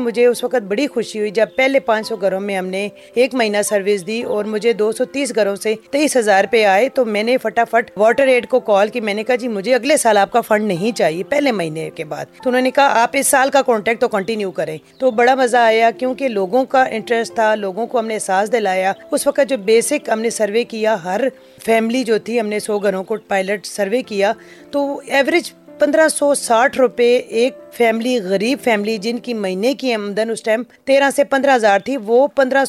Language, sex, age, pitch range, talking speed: Urdu, female, 30-49, 210-255 Hz, 215 wpm